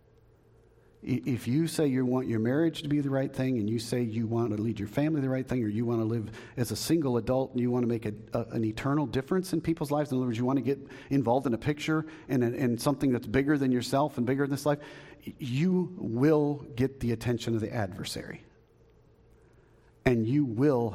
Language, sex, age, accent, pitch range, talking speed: English, male, 50-69, American, 115-140 Hz, 230 wpm